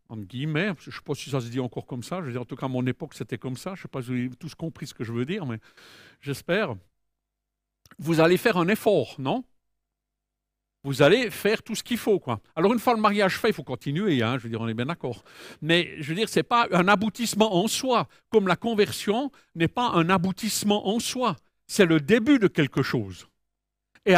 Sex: male